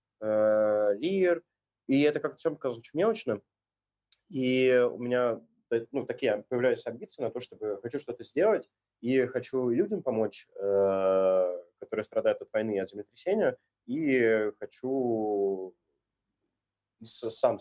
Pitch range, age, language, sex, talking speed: 100-130 Hz, 20-39, Russian, male, 115 wpm